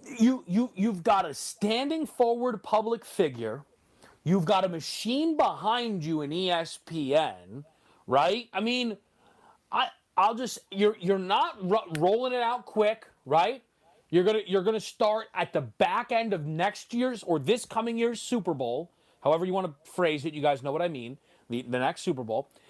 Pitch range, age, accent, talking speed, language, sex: 165-250 Hz, 30-49, American, 175 wpm, English, male